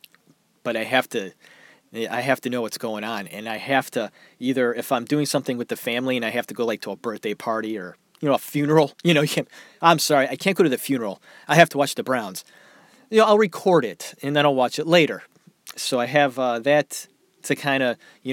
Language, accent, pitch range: English, American, 135-165 Hz